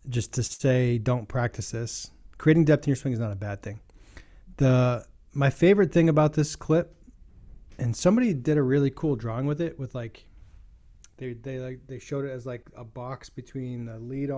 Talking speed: 195 wpm